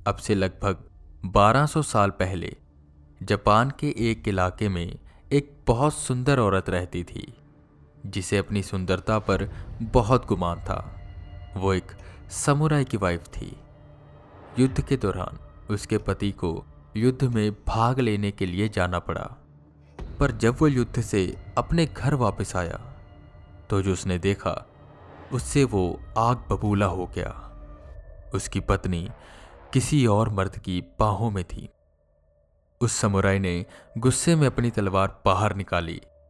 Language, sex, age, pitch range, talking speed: English, male, 20-39, 85-115 Hz, 135 wpm